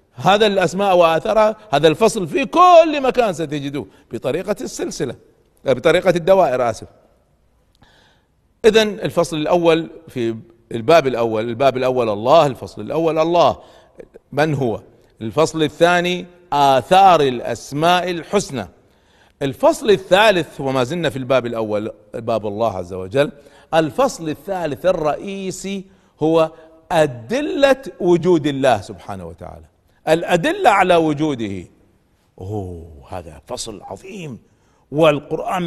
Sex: male